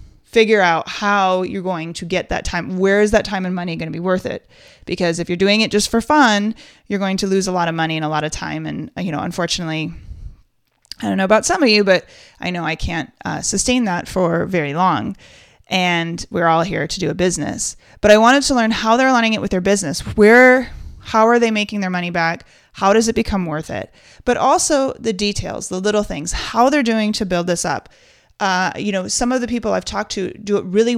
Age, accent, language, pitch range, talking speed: 30-49, American, English, 170-215 Hz, 240 wpm